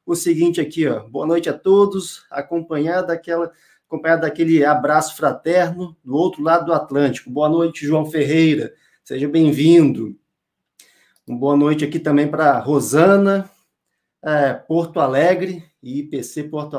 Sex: male